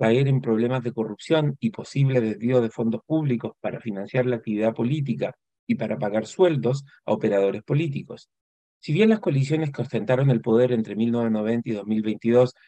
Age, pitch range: 40-59, 115-145 Hz